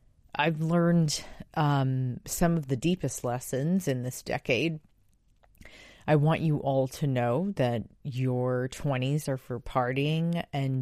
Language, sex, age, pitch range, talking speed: English, female, 30-49, 130-165 Hz, 135 wpm